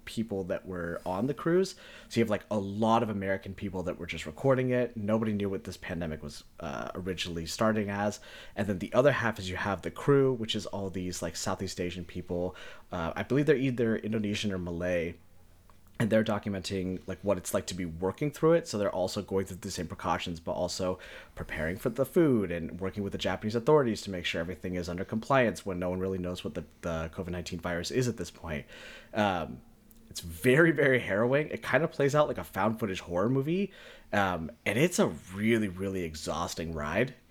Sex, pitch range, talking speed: male, 90-115 Hz, 215 wpm